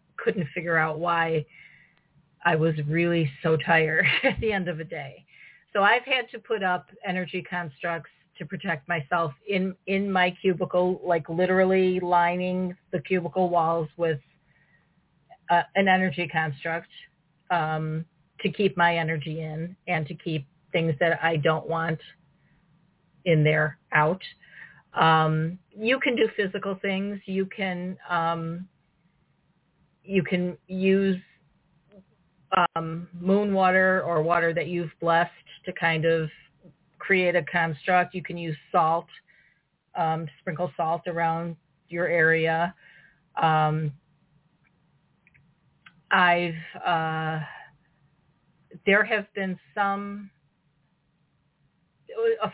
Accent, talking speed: American, 115 wpm